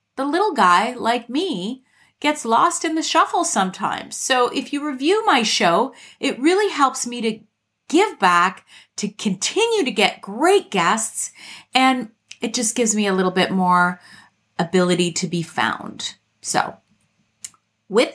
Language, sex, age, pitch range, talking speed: English, female, 30-49, 185-275 Hz, 150 wpm